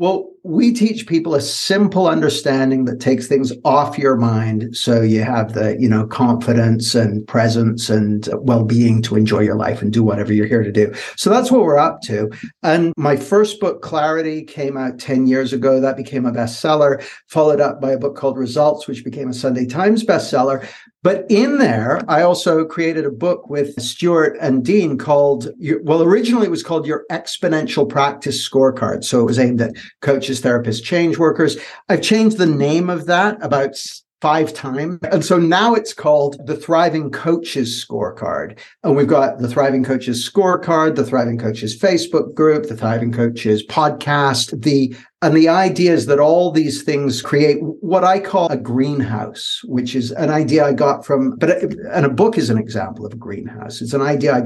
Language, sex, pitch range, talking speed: English, male, 120-160 Hz, 185 wpm